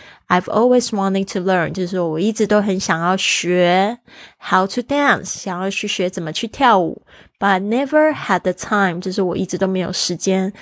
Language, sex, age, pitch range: Chinese, female, 20-39, 170-210 Hz